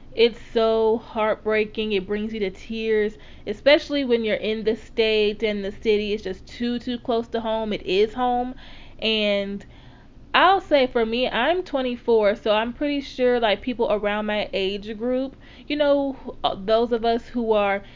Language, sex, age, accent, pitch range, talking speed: English, female, 20-39, American, 210-245 Hz, 170 wpm